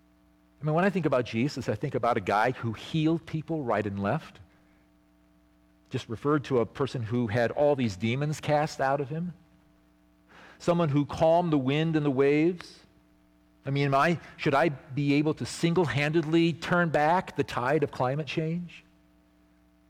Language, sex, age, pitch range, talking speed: English, male, 50-69, 110-155 Hz, 165 wpm